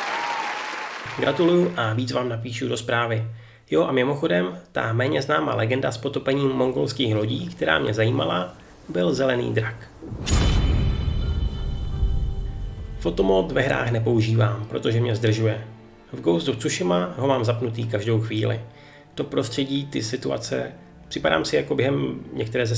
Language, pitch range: Czech, 110-130 Hz